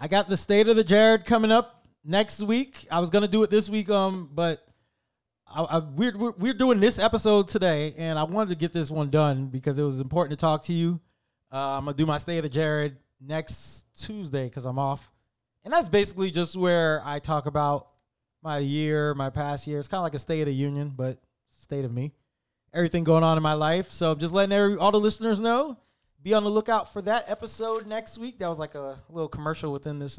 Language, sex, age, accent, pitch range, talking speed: English, male, 20-39, American, 145-205 Hz, 235 wpm